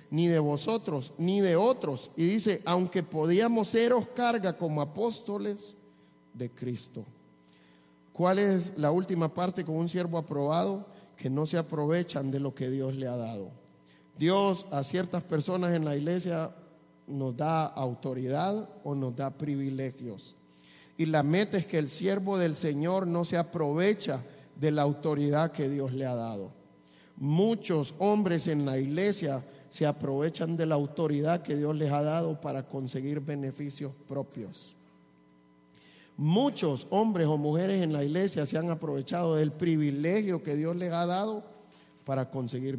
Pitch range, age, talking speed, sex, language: 130-170 Hz, 40-59, 150 wpm, male, English